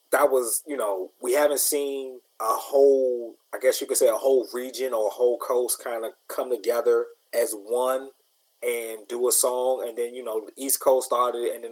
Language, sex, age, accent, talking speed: English, male, 20-39, American, 210 wpm